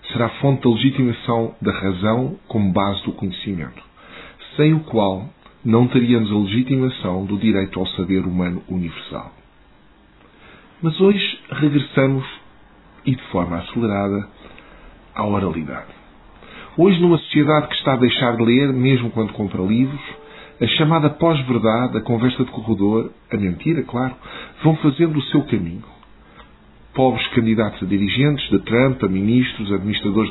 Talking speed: 135 wpm